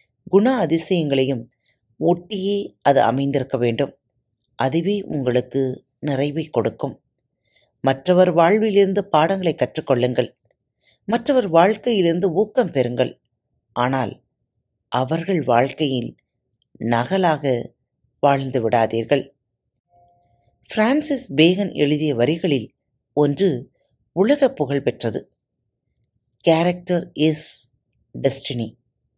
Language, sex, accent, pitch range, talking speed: Tamil, female, native, 125-185 Hz, 70 wpm